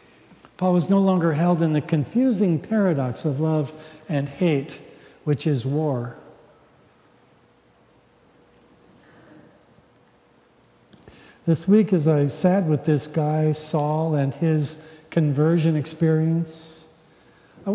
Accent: American